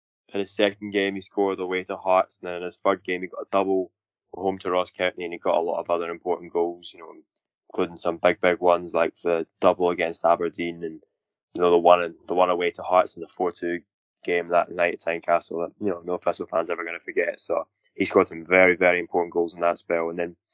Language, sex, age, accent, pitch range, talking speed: English, male, 10-29, British, 85-100 Hz, 250 wpm